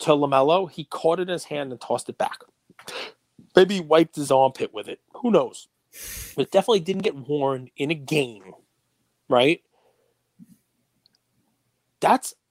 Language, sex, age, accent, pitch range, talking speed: English, male, 30-49, American, 120-150 Hz, 155 wpm